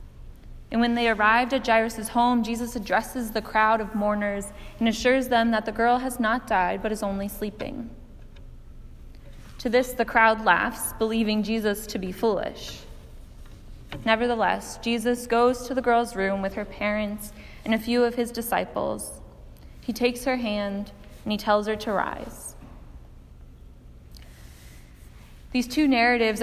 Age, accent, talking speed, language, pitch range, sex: 20-39, American, 150 wpm, English, 195-235 Hz, female